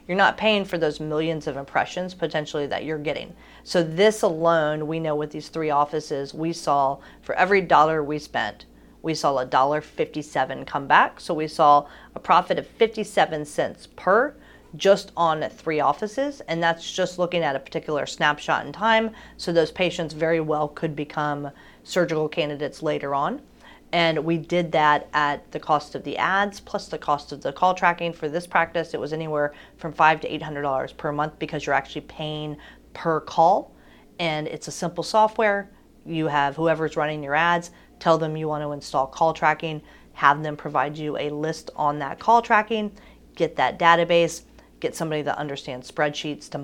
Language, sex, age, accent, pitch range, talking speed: English, female, 40-59, American, 150-170 Hz, 180 wpm